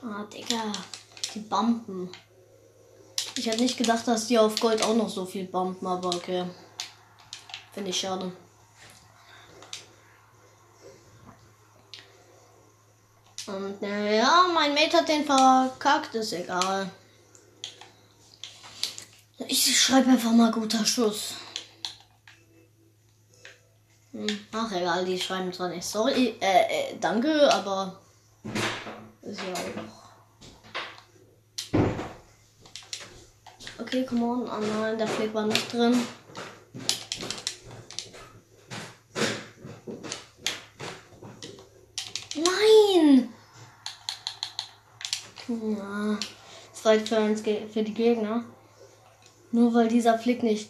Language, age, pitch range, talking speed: German, 10-29, 180-235 Hz, 90 wpm